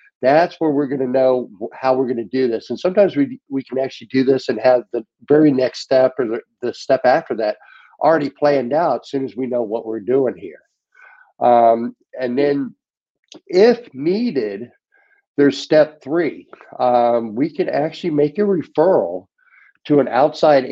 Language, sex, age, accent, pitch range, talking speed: English, male, 50-69, American, 120-145 Hz, 180 wpm